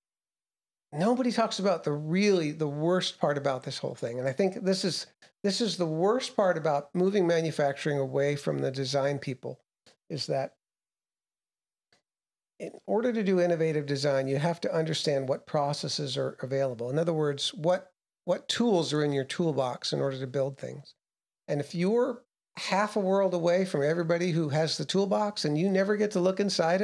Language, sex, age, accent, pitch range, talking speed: English, male, 50-69, American, 140-190 Hz, 180 wpm